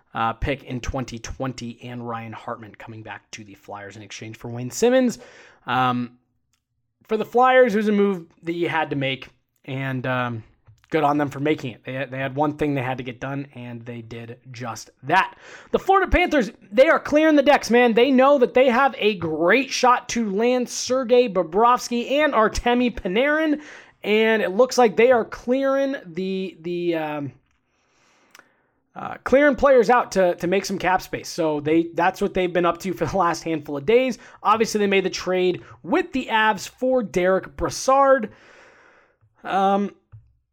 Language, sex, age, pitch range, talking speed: English, male, 20-39, 130-215 Hz, 180 wpm